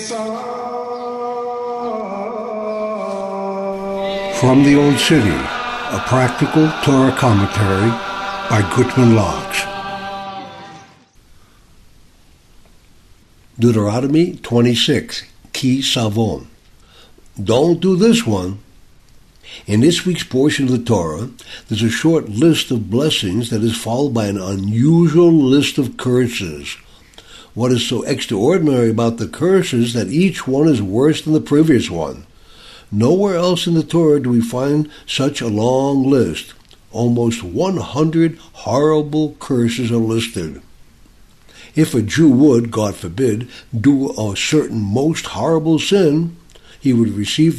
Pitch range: 115-165 Hz